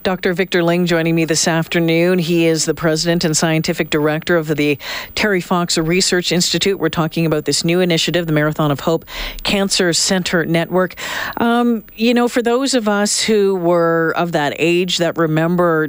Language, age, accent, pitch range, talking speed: English, 50-69, American, 150-190 Hz, 180 wpm